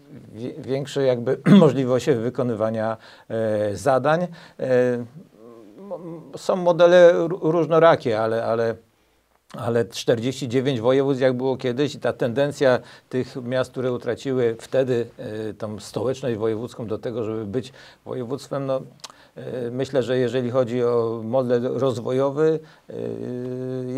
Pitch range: 110-130 Hz